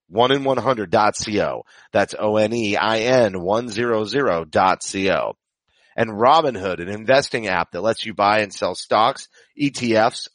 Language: English